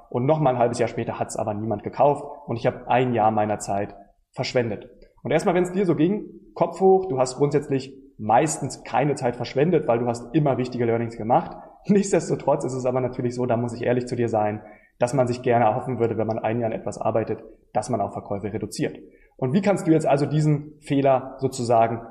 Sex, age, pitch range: male, 20-39, 120-155 Hz